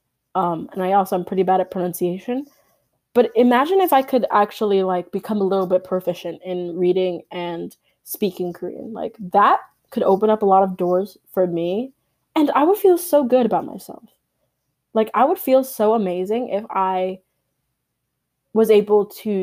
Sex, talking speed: female, 175 wpm